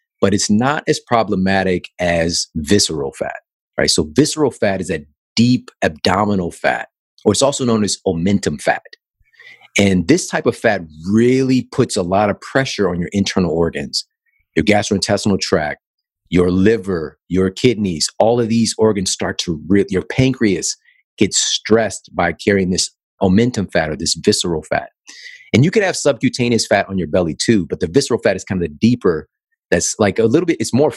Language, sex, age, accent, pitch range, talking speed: English, male, 40-59, American, 90-125 Hz, 175 wpm